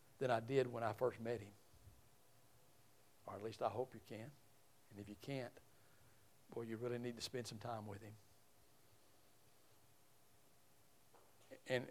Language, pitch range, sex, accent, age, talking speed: English, 120-150 Hz, male, American, 60-79, 150 wpm